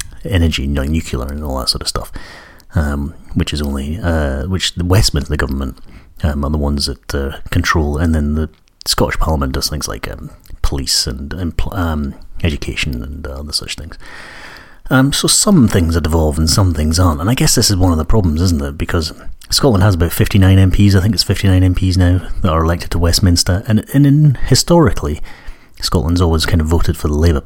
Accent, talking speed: British, 200 wpm